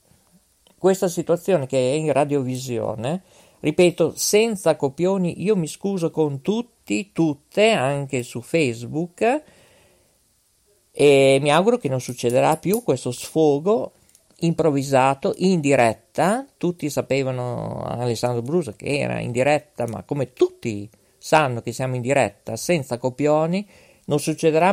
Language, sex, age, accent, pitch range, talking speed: Italian, male, 50-69, native, 130-190 Hz, 120 wpm